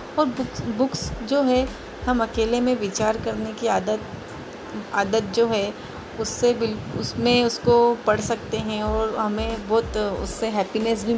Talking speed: 150 wpm